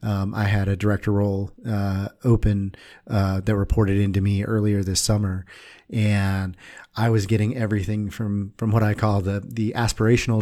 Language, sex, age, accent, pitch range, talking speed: English, male, 30-49, American, 100-115 Hz, 165 wpm